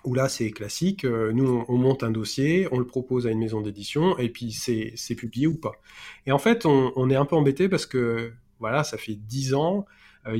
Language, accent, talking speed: French, French, 230 wpm